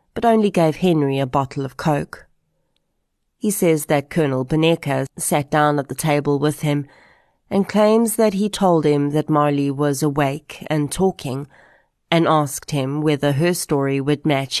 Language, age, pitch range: English, 30-49, 140-165 Hz